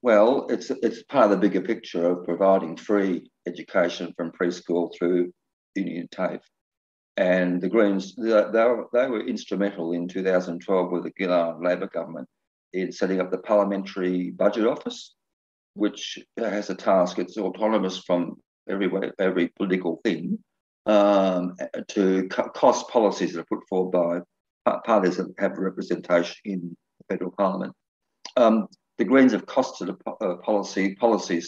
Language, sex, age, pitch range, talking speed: English, male, 50-69, 90-100 Hz, 140 wpm